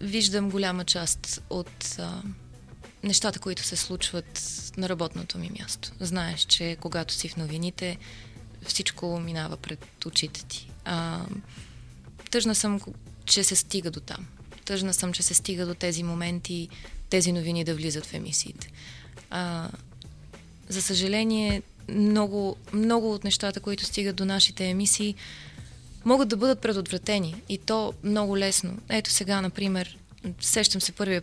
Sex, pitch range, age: female, 170-200 Hz, 20-39